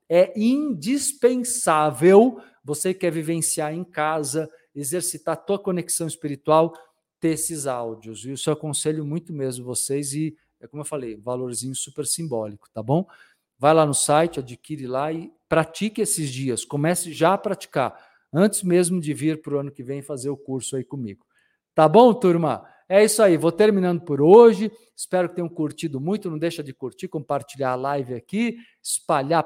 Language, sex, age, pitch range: Portuguese, male, 50-69, 140-180 Hz